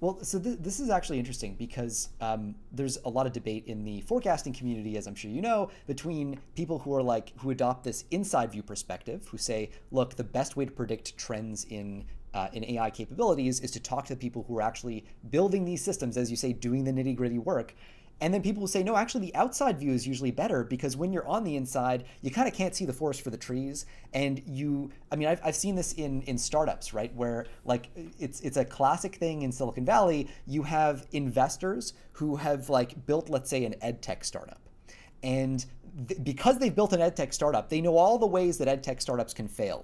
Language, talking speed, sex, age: English, 225 wpm, male, 30-49